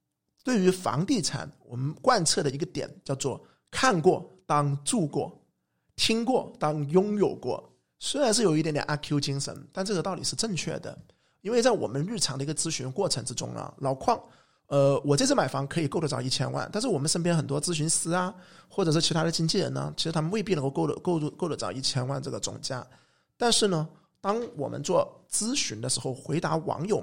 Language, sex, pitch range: Chinese, male, 140-175 Hz